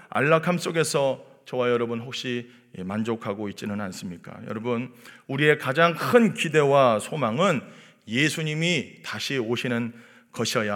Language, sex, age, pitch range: Korean, male, 40-59, 130-205 Hz